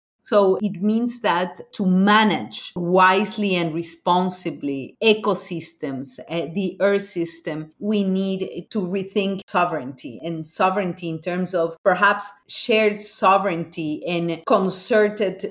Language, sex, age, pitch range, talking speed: English, female, 40-59, 165-200 Hz, 110 wpm